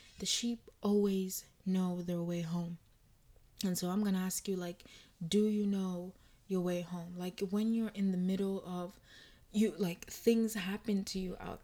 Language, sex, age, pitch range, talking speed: English, female, 20-39, 180-205 Hz, 180 wpm